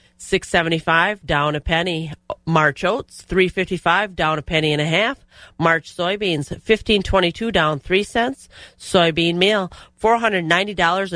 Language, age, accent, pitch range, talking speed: English, 30-49, American, 155-195 Hz, 120 wpm